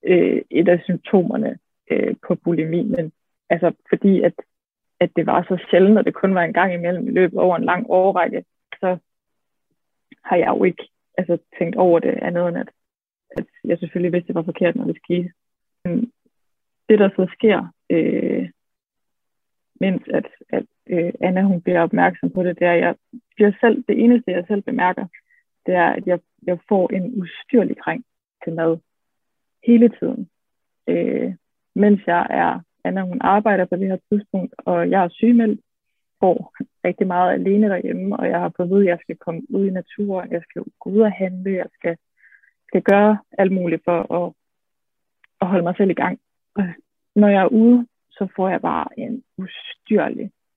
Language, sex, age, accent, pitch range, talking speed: Danish, female, 20-39, native, 175-215 Hz, 180 wpm